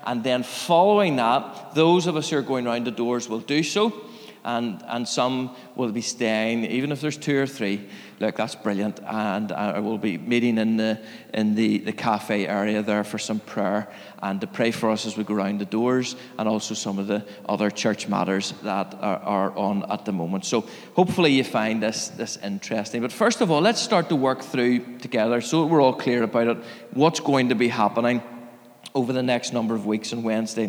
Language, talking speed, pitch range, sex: English, 215 wpm, 110-135 Hz, male